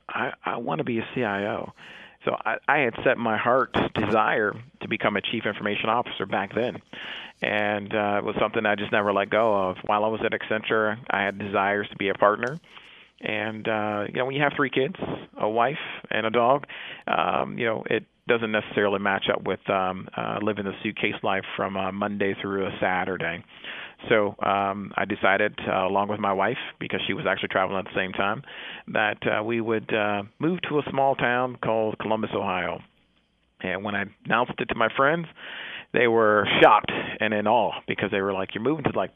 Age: 40-59